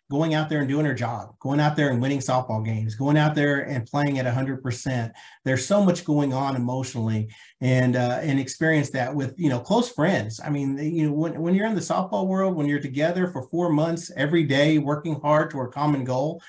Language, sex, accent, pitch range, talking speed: English, male, American, 130-155 Hz, 230 wpm